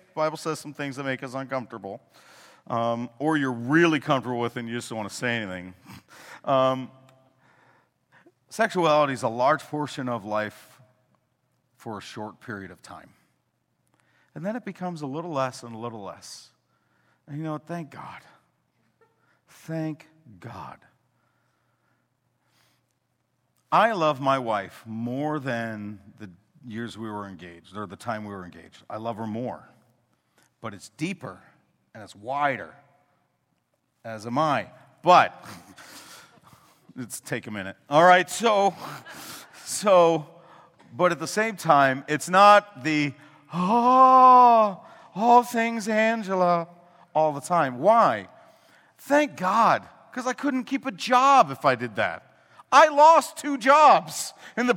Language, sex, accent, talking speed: English, male, American, 140 wpm